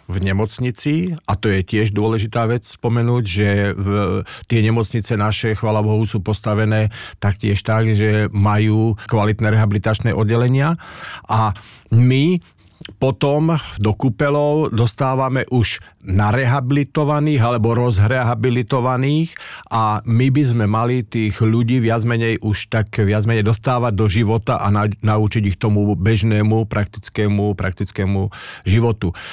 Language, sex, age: Slovak, male, 50-69